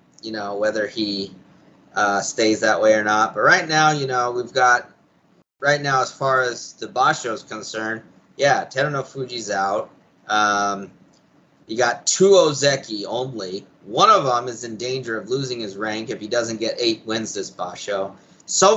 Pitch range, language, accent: 115-150 Hz, English, American